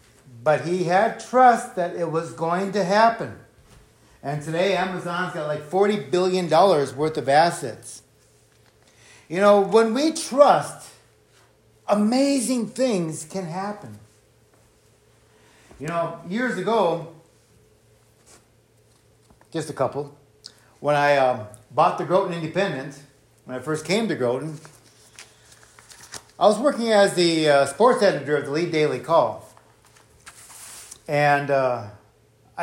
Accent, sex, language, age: American, male, English, 50-69